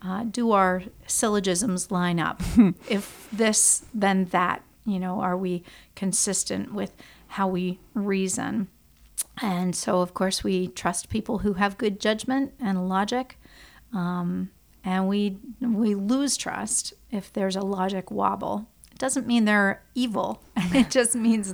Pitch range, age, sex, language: 190-225 Hz, 40-59, female, English